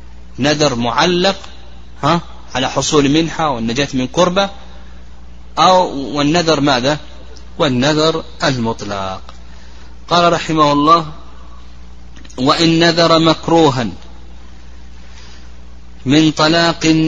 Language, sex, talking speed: Arabic, male, 75 wpm